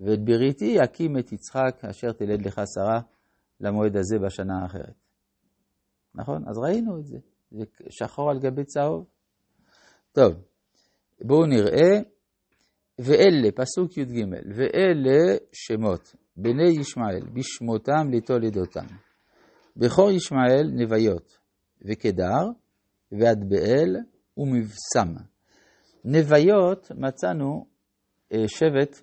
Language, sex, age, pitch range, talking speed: Hebrew, male, 50-69, 100-140 Hz, 95 wpm